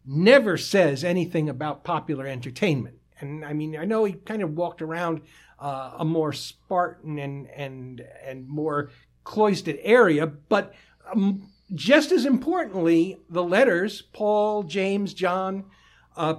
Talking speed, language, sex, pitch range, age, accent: 135 wpm, English, male, 160-220 Hz, 60-79, American